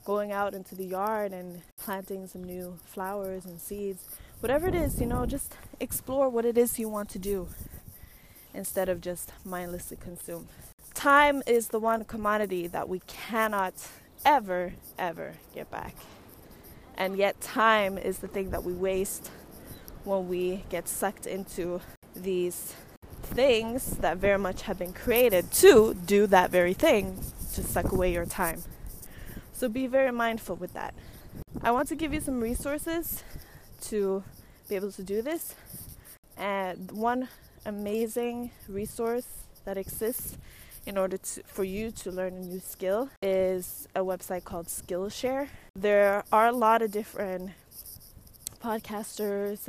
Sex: female